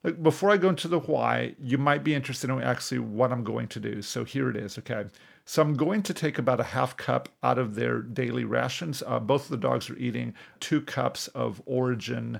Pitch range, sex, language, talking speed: 120-150 Hz, male, English, 225 wpm